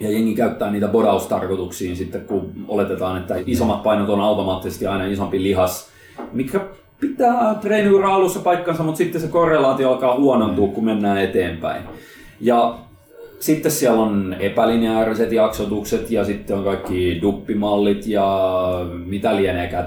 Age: 30-49